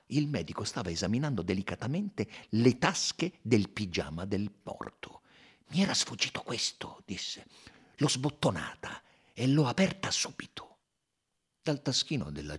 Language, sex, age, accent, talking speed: Italian, male, 50-69, native, 120 wpm